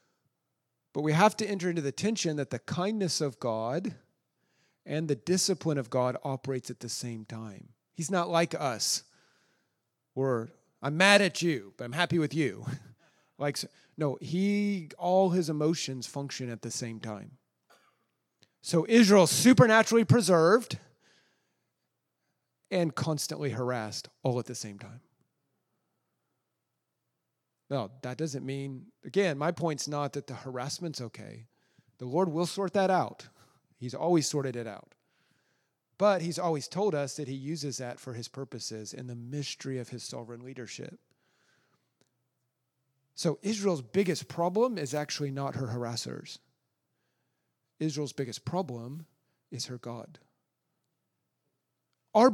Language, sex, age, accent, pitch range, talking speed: English, male, 40-59, American, 125-170 Hz, 135 wpm